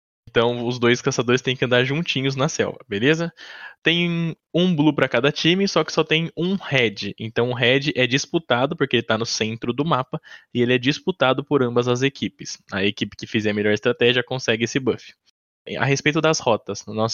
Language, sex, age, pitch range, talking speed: Portuguese, male, 10-29, 115-150 Hz, 205 wpm